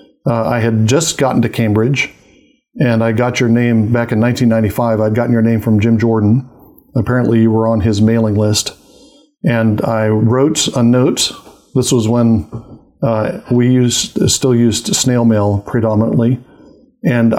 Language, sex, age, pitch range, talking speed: English, male, 50-69, 110-125 Hz, 160 wpm